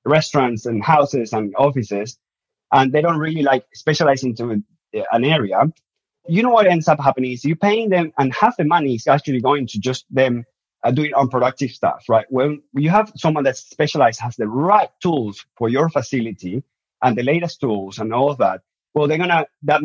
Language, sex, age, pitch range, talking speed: English, male, 30-49, 120-150 Hz, 195 wpm